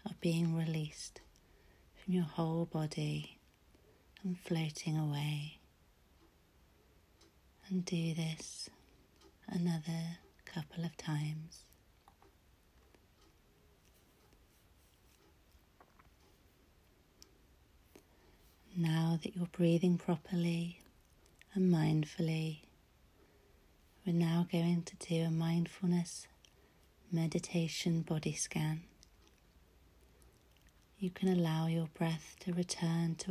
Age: 40-59